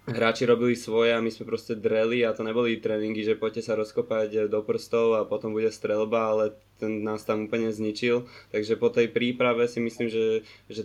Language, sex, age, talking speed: Slovak, male, 20-39, 200 wpm